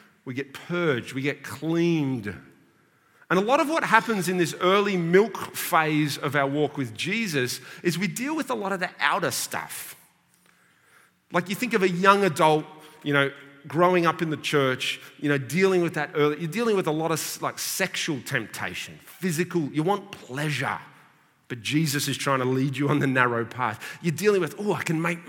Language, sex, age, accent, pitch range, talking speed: English, male, 30-49, Australian, 140-190 Hz, 195 wpm